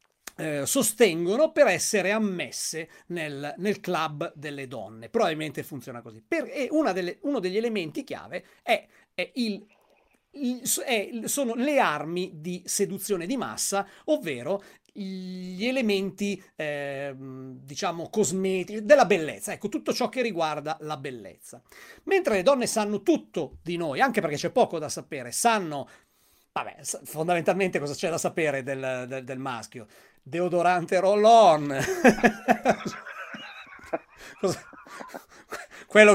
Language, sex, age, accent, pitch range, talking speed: Italian, male, 40-59, native, 165-215 Hz, 125 wpm